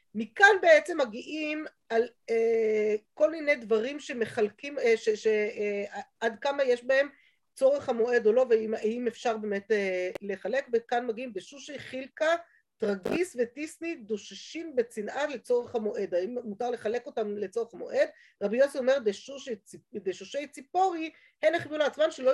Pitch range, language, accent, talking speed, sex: 210-290 Hz, Hebrew, native, 140 wpm, female